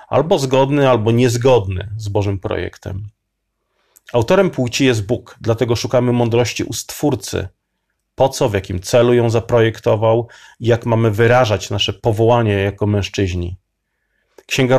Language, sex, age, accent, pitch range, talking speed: Polish, male, 30-49, native, 105-125 Hz, 130 wpm